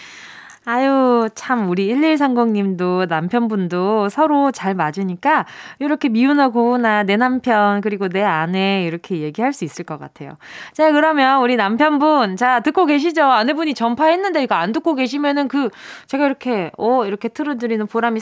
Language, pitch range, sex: Korean, 205-300 Hz, female